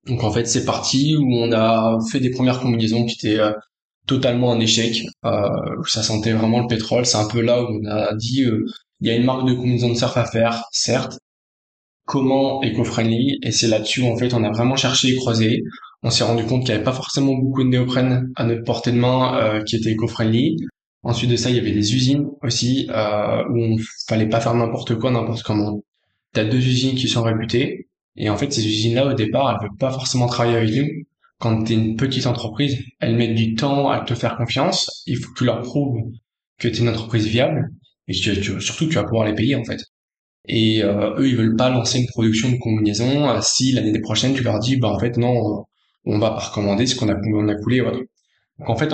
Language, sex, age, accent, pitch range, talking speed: French, male, 20-39, French, 110-130 Hz, 235 wpm